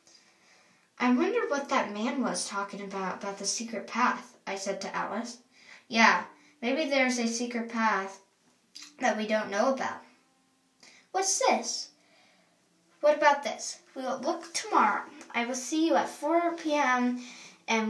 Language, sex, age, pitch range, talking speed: English, female, 10-29, 210-275 Hz, 150 wpm